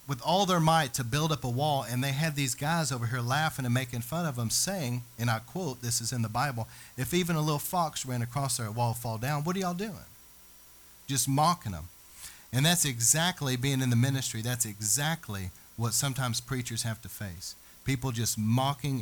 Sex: male